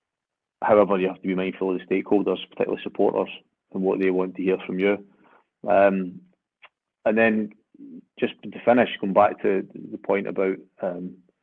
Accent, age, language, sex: British, 30-49, English, male